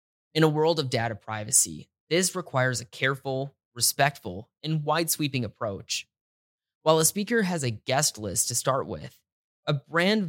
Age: 20-39